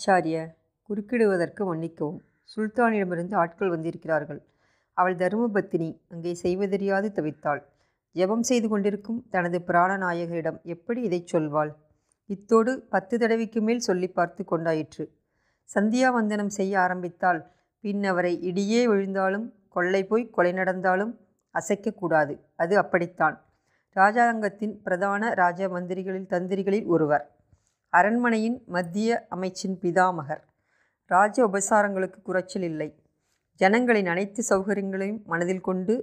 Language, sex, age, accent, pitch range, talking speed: Tamil, female, 30-49, native, 170-205 Hz, 100 wpm